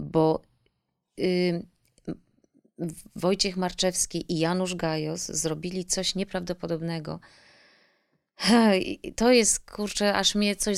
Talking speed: 85 wpm